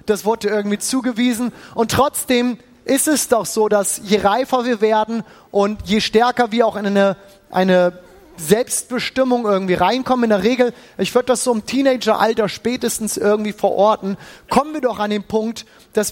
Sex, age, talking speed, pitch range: male, 30-49, 170 wpm, 190-245 Hz